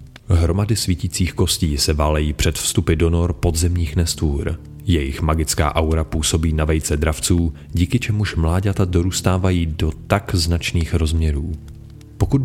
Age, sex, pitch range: 30-49, male, 80-95 Hz